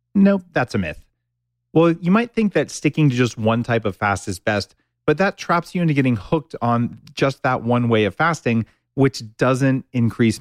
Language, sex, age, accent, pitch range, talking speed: English, male, 40-59, American, 110-145 Hz, 200 wpm